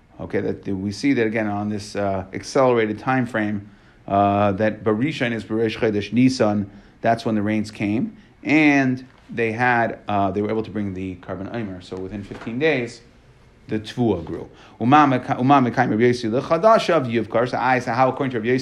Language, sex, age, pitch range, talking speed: English, male, 30-49, 110-135 Hz, 170 wpm